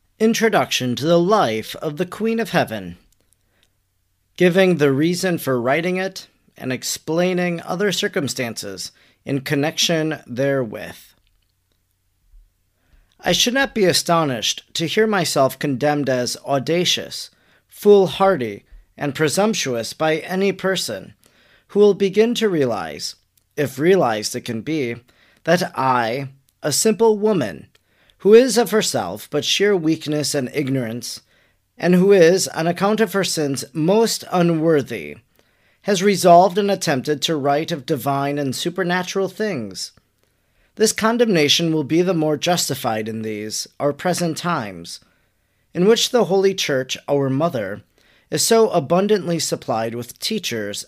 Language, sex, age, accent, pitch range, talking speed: English, male, 40-59, American, 125-185 Hz, 130 wpm